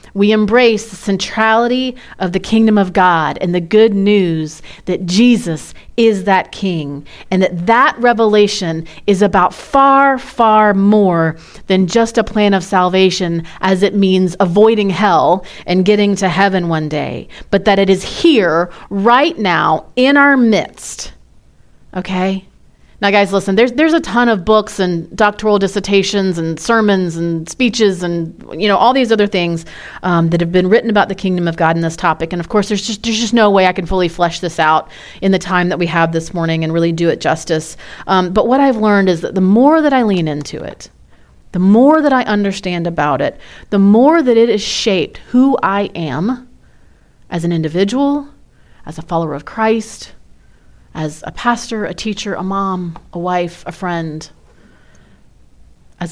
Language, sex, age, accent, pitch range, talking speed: English, female, 30-49, American, 170-215 Hz, 180 wpm